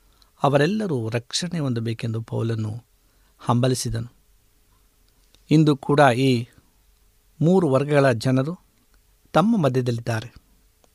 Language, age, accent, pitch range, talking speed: Kannada, 50-69, native, 115-150 Hz, 70 wpm